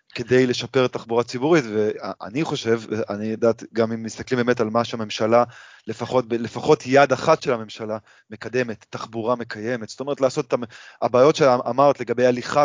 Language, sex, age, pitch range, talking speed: Hebrew, male, 20-39, 115-140 Hz, 155 wpm